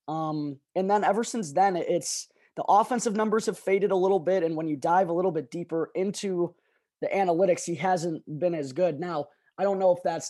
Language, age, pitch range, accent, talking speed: English, 20-39, 160-195 Hz, American, 215 wpm